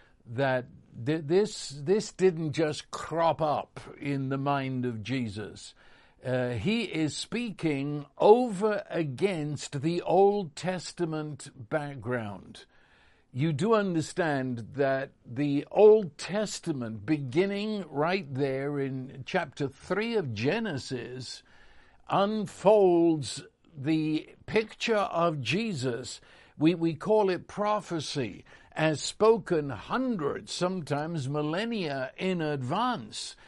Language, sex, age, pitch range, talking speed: English, male, 60-79, 140-190 Hz, 95 wpm